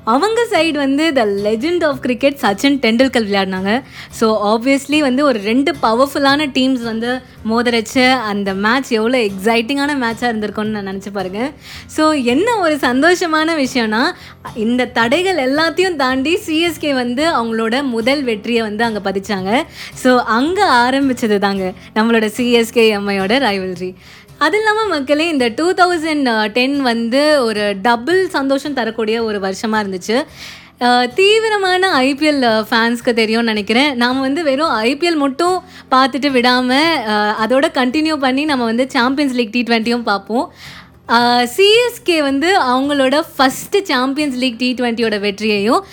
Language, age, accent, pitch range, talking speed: Tamil, 20-39, native, 225-290 Hz, 125 wpm